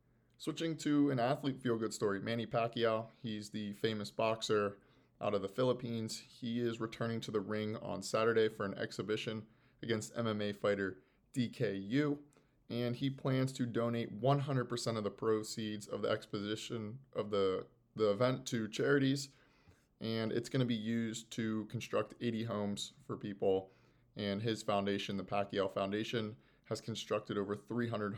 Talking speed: 150 wpm